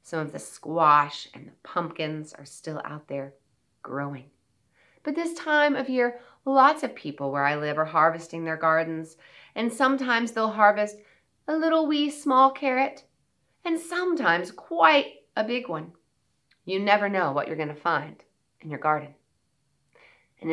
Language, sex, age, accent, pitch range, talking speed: English, female, 30-49, American, 150-235 Hz, 155 wpm